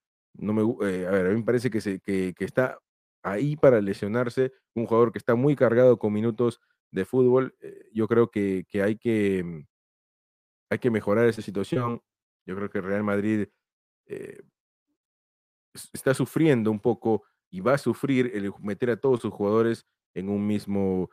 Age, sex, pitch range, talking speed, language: 30-49, male, 105-125 Hz, 175 wpm, Spanish